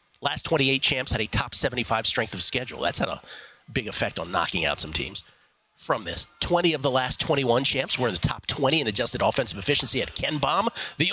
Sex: male